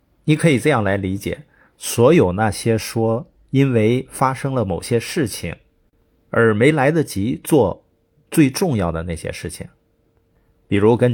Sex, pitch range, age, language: male, 95-135 Hz, 50-69, Chinese